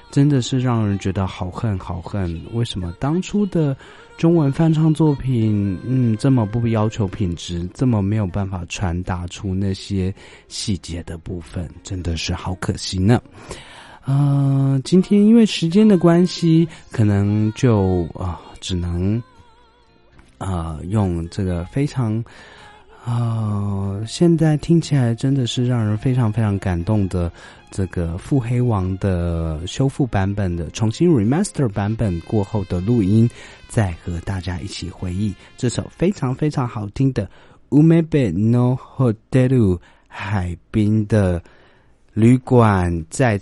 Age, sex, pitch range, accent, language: 30-49, male, 90-125 Hz, native, Chinese